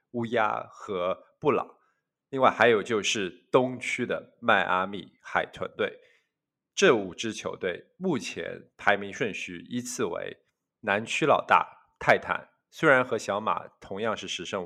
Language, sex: Chinese, male